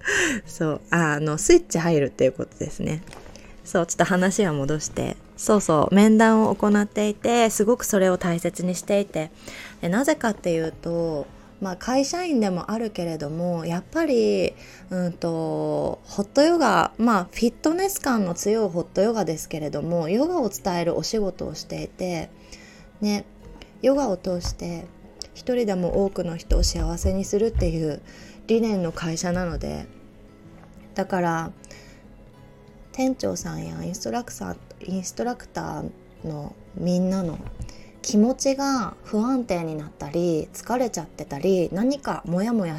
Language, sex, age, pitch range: Japanese, female, 20-39, 165-225 Hz